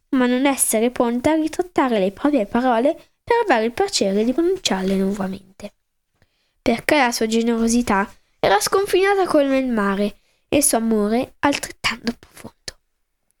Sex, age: female, 10-29